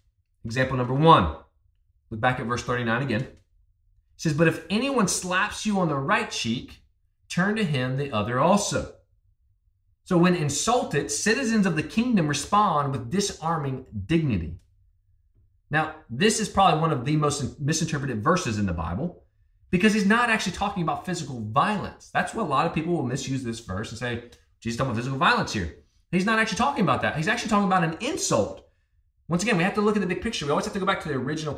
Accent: American